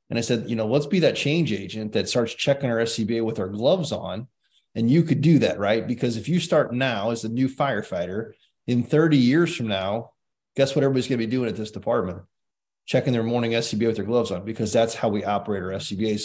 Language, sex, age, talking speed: English, male, 20-39, 235 wpm